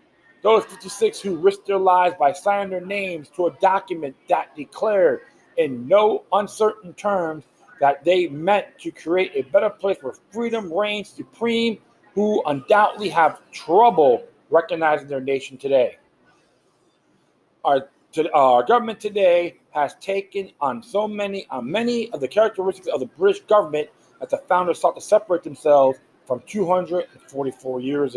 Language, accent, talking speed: English, American, 145 wpm